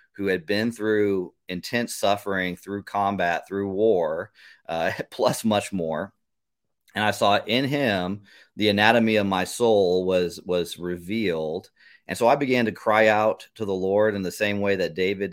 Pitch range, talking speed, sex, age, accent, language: 95-110 Hz, 170 wpm, male, 40-59, American, English